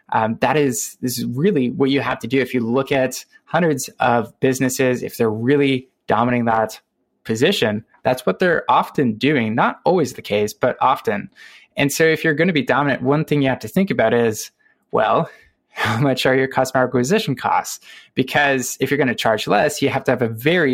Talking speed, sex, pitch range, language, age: 210 wpm, male, 120-155 Hz, English, 20-39